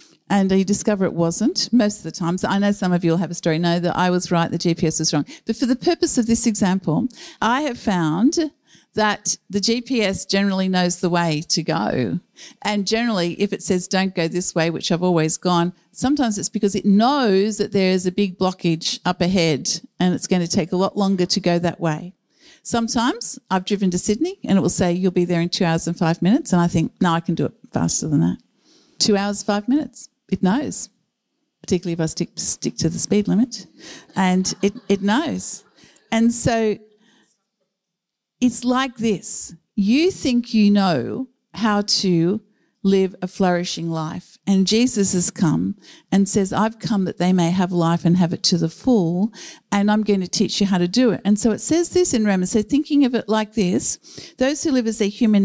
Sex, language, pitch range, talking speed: female, English, 180-235 Hz, 210 wpm